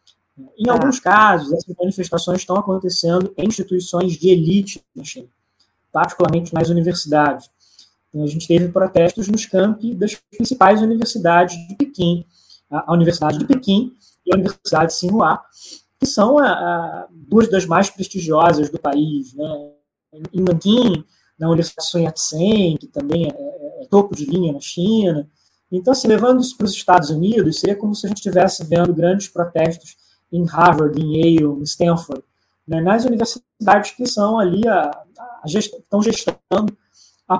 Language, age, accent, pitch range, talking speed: Portuguese, 20-39, Brazilian, 170-205 Hz, 155 wpm